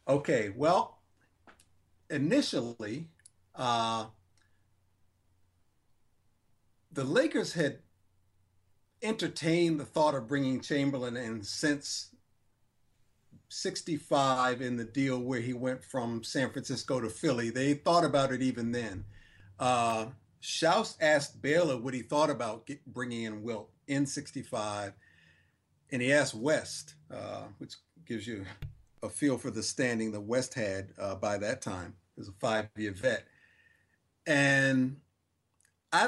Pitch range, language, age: 110-140 Hz, English, 50-69